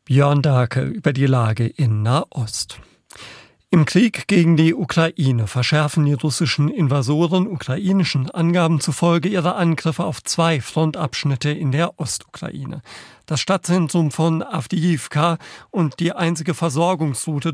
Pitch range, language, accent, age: 140-170 Hz, German, German, 50-69